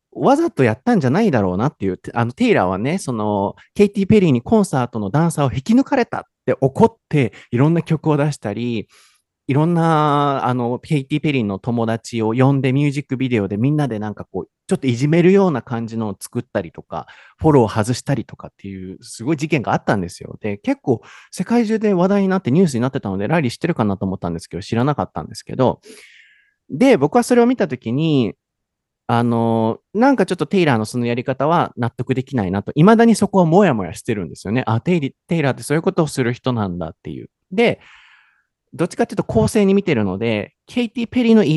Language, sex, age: Japanese, male, 30-49